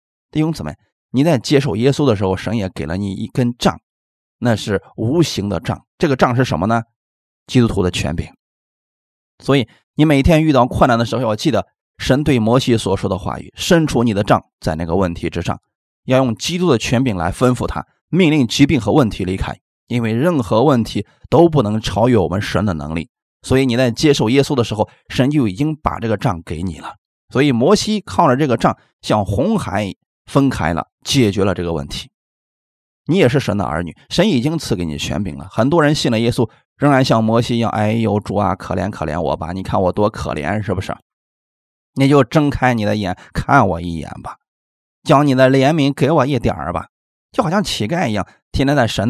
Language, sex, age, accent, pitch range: Chinese, male, 20-39, native, 95-135 Hz